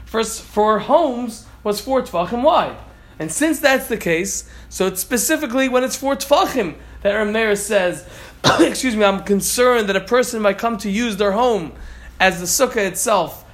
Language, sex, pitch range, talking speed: Malay, male, 190-255 Hz, 175 wpm